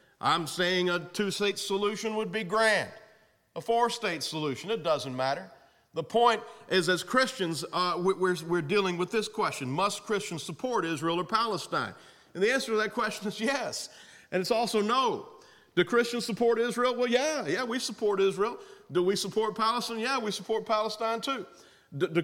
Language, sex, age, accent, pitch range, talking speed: English, male, 40-59, American, 165-230 Hz, 180 wpm